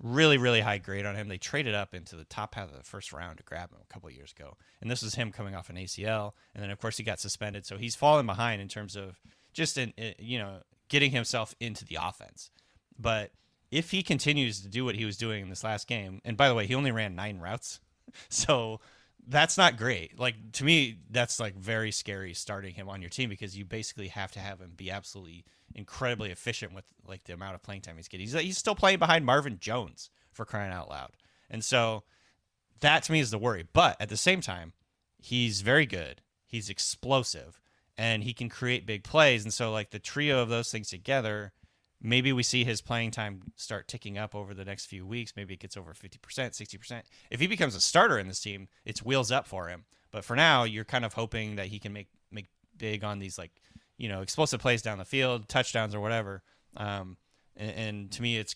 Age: 30-49